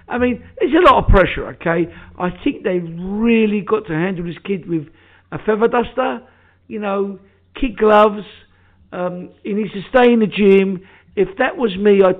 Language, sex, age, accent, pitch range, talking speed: English, male, 50-69, British, 170-210 Hz, 180 wpm